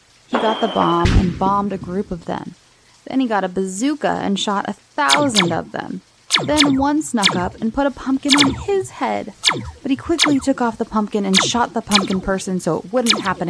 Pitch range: 195-260 Hz